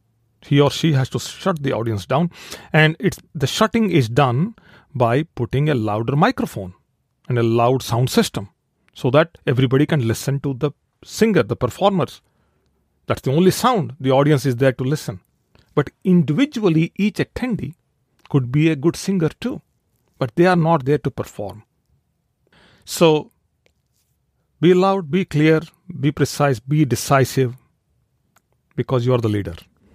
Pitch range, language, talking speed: 120-160 Hz, English, 150 wpm